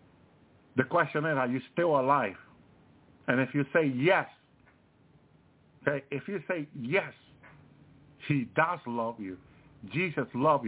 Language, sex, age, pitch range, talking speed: English, male, 50-69, 110-145 Hz, 125 wpm